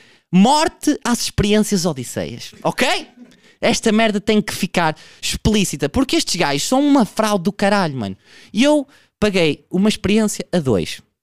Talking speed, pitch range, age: 140 wpm, 170-245 Hz, 20-39